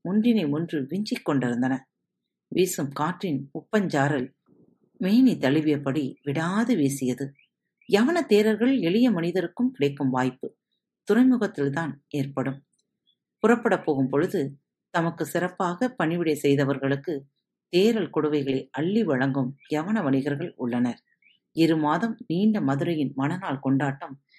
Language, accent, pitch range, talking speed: Tamil, native, 135-195 Hz, 95 wpm